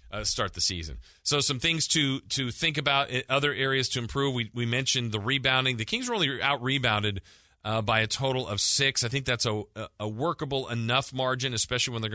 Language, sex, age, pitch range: English, male, 40-59, 105-125 Hz